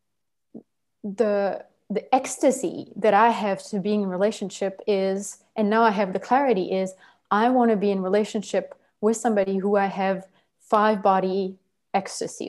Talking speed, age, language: 155 wpm, 20-39, English